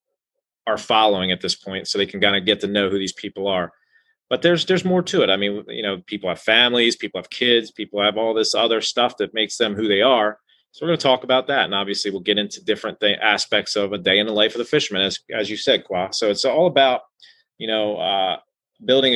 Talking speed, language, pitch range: 255 wpm, English, 105-130 Hz